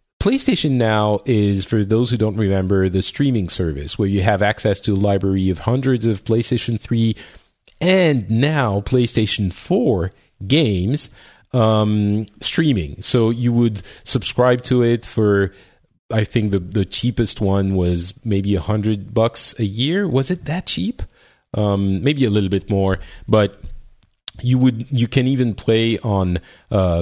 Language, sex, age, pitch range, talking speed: English, male, 30-49, 100-125 Hz, 155 wpm